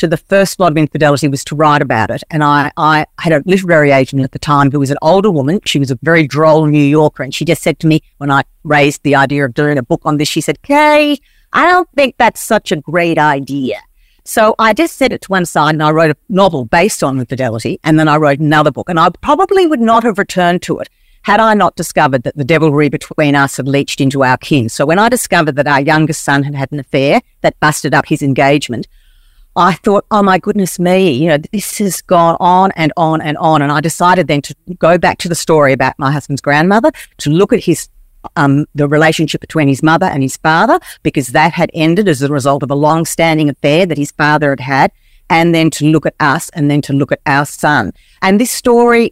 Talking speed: 240 wpm